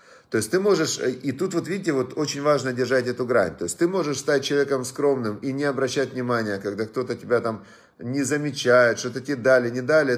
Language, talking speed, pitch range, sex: Russian, 210 wpm, 115-145 Hz, male